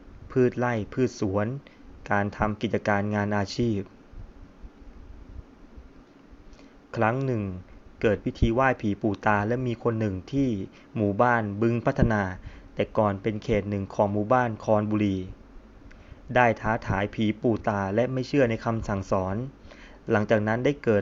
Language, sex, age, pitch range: Thai, male, 20-39, 100-120 Hz